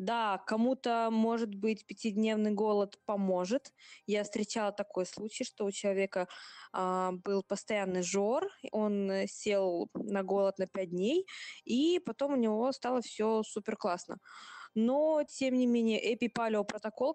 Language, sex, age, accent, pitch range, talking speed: Russian, female, 20-39, native, 200-235 Hz, 135 wpm